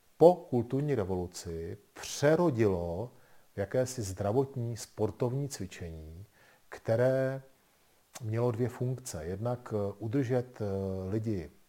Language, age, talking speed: Czech, 40-59, 75 wpm